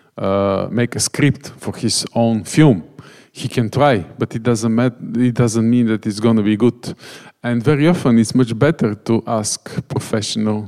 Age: 50-69